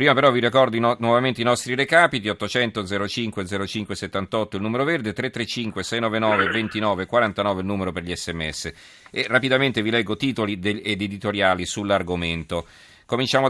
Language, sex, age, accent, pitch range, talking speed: Italian, male, 40-59, native, 90-110 Hz, 150 wpm